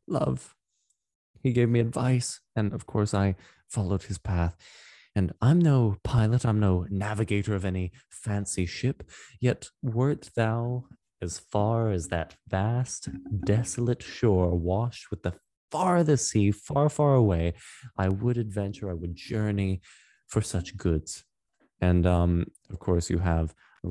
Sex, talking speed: male, 145 wpm